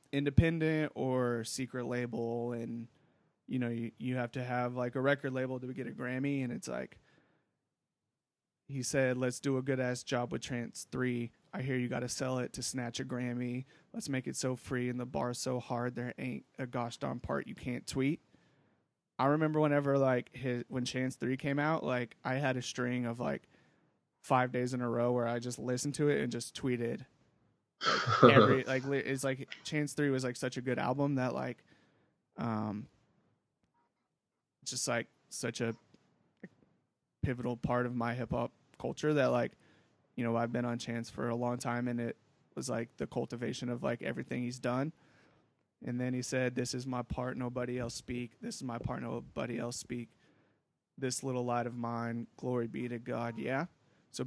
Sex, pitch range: male, 120-130 Hz